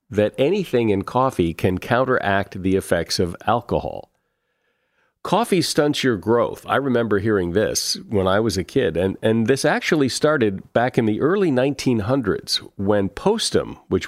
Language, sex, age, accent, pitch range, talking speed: English, male, 50-69, American, 90-125 Hz, 155 wpm